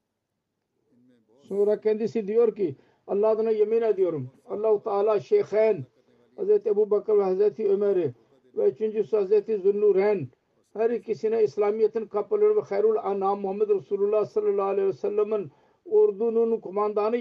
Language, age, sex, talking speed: Turkish, 50-69, male, 130 wpm